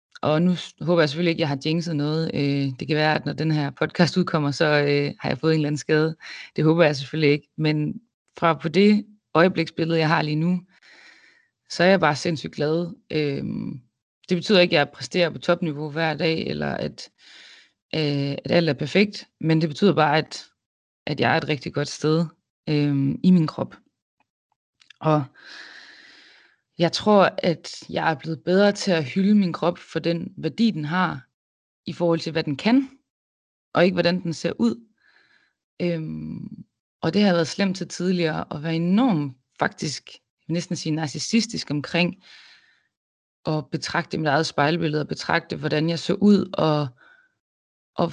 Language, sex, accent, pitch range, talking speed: Danish, female, native, 150-180 Hz, 175 wpm